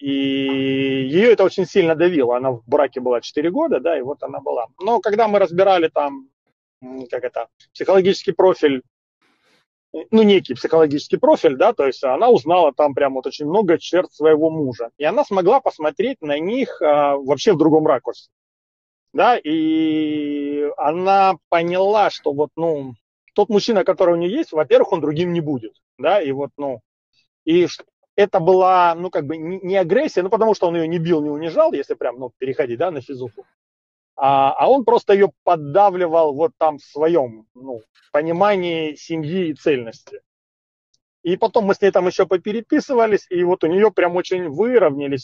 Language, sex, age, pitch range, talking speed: Russian, male, 30-49, 145-195 Hz, 170 wpm